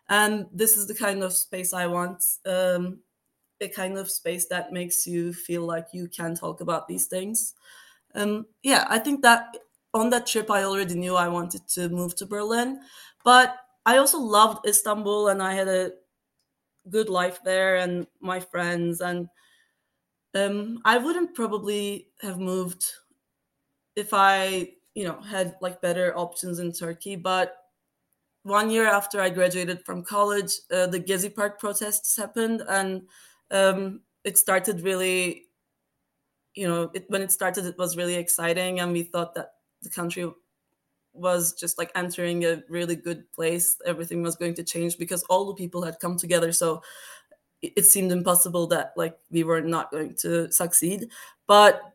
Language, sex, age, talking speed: English, female, 20-39, 165 wpm